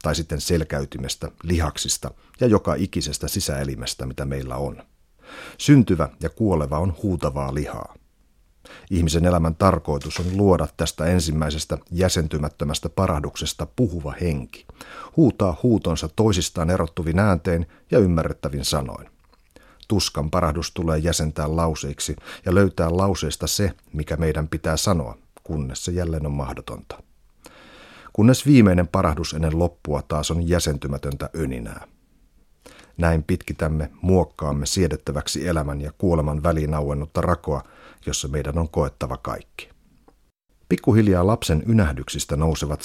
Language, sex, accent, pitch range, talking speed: Finnish, male, native, 75-90 Hz, 115 wpm